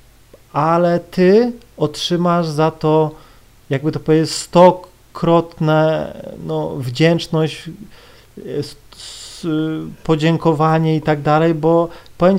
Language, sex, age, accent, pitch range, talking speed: Polish, male, 30-49, native, 130-160 Hz, 80 wpm